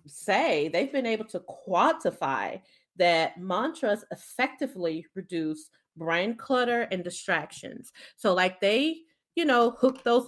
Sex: female